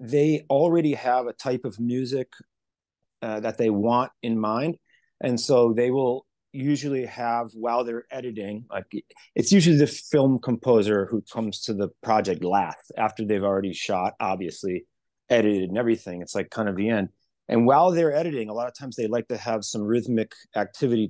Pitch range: 110-135 Hz